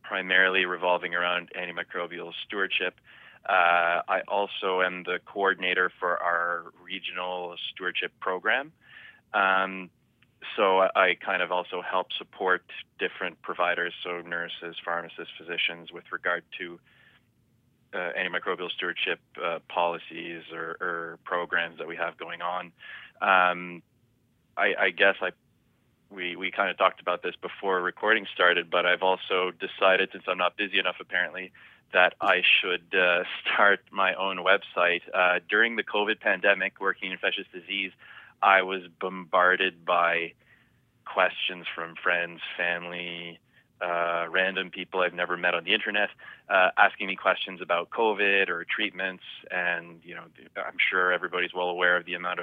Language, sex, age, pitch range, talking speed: English, male, 20-39, 85-95 Hz, 145 wpm